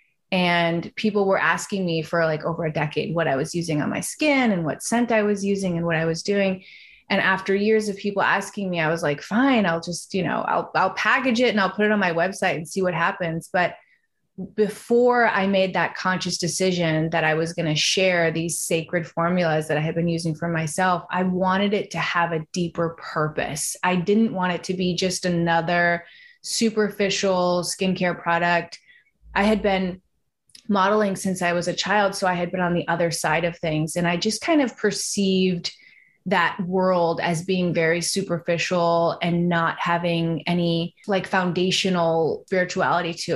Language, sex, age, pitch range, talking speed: English, female, 20-39, 170-200 Hz, 190 wpm